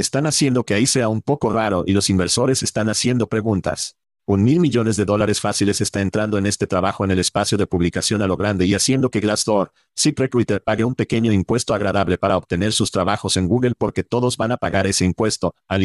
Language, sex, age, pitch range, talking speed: Spanish, male, 50-69, 100-120 Hz, 215 wpm